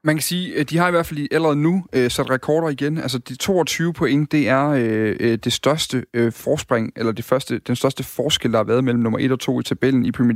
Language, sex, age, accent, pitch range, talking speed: Danish, male, 30-49, native, 120-150 Hz, 255 wpm